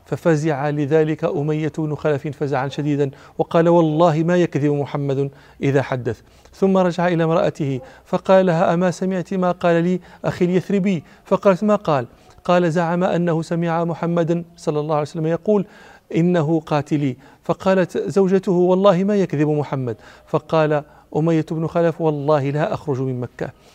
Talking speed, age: 140 wpm, 40-59